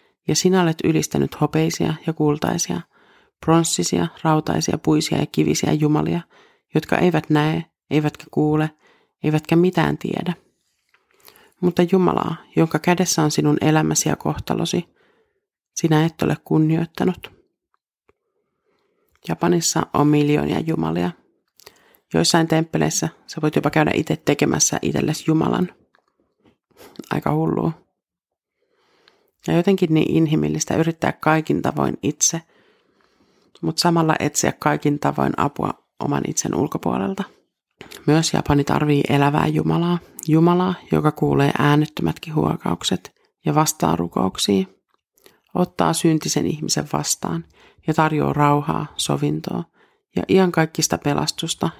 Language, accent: Finnish, native